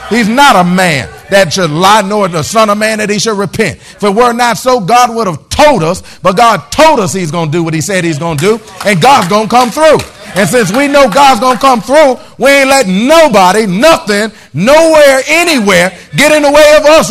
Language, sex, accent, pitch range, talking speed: English, male, American, 195-280 Hz, 240 wpm